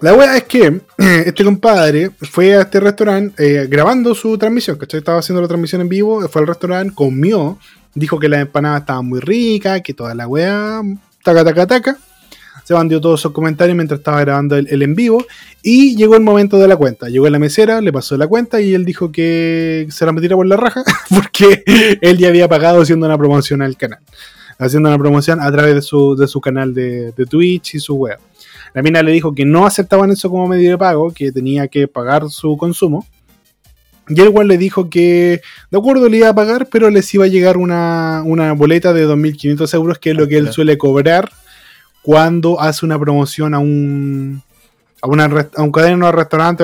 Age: 20-39